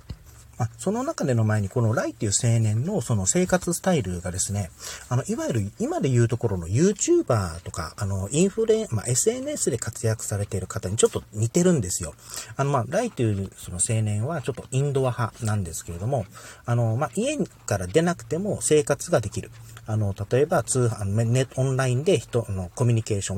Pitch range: 100-140 Hz